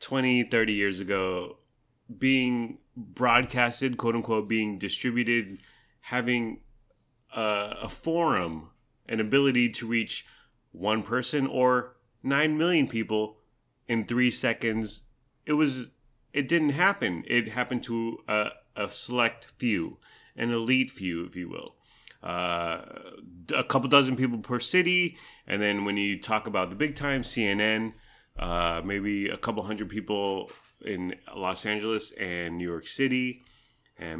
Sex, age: male, 30-49